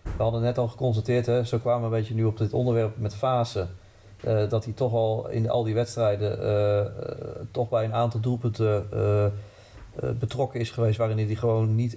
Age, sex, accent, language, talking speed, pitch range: 40-59, male, Dutch, Dutch, 215 wpm, 105-120 Hz